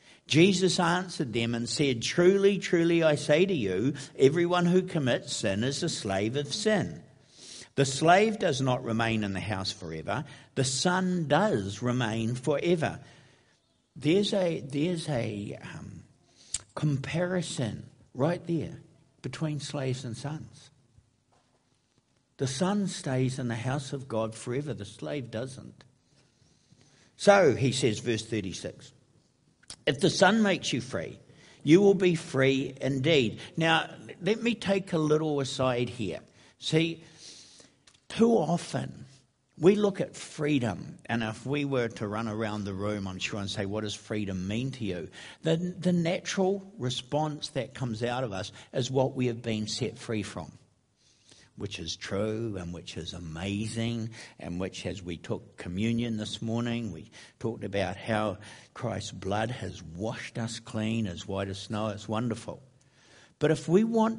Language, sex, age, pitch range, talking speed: English, male, 60-79, 110-160 Hz, 150 wpm